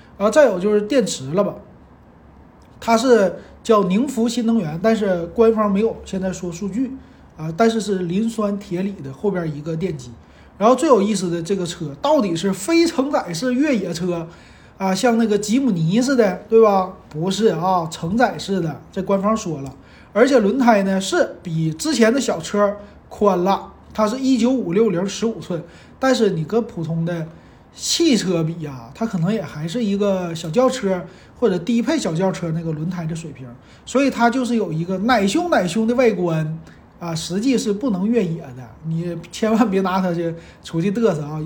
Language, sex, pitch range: Chinese, male, 170-230 Hz